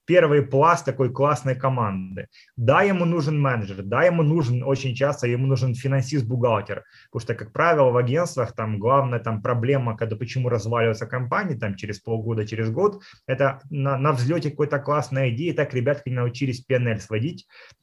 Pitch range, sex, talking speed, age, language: 120-145 Hz, male, 170 wpm, 20-39, Russian